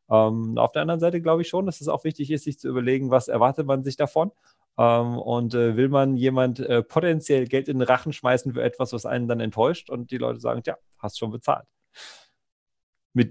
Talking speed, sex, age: 220 wpm, male, 30-49